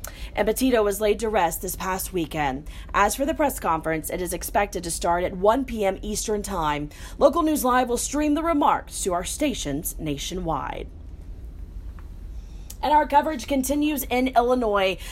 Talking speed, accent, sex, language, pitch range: 165 wpm, American, female, English, 185-285 Hz